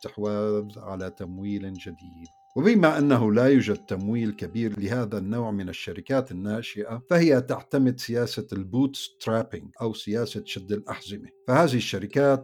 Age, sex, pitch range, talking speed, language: 60-79, male, 105-130 Hz, 110 wpm, Arabic